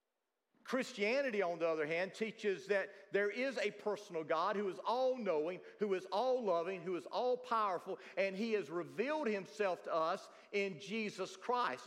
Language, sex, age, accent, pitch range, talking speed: English, male, 50-69, American, 195-250 Hz, 155 wpm